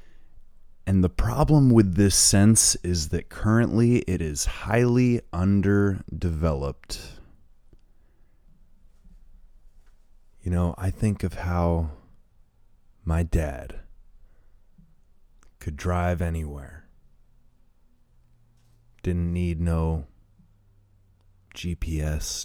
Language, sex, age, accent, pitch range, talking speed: English, male, 30-49, American, 80-95 Hz, 75 wpm